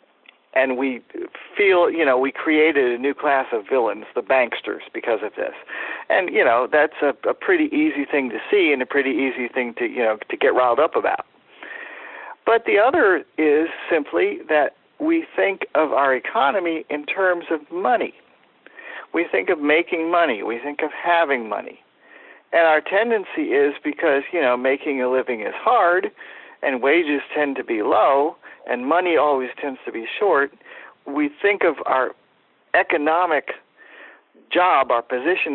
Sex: male